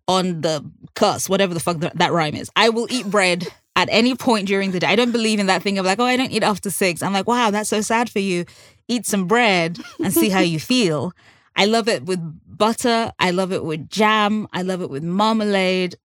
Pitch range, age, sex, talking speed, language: 165-215 Hz, 20-39, female, 245 wpm, English